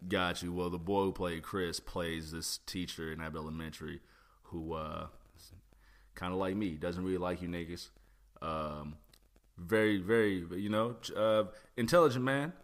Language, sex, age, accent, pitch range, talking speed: English, male, 30-49, American, 80-110 Hz, 155 wpm